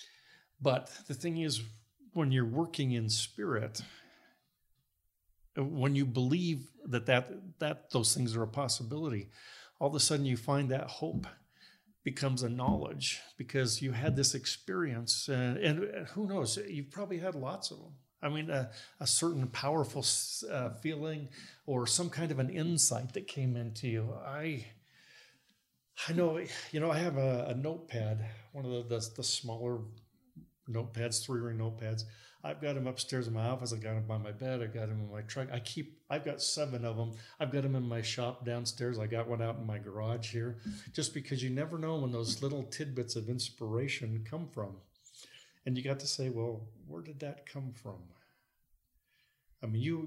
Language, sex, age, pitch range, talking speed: English, male, 50-69, 115-145 Hz, 180 wpm